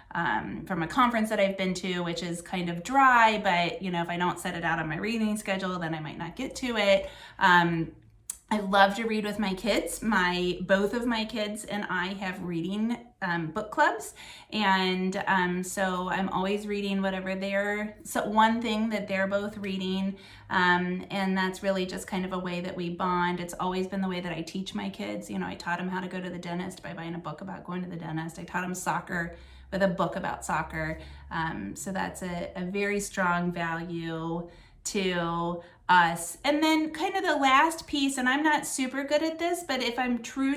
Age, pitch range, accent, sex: 30-49, 180-230 Hz, American, female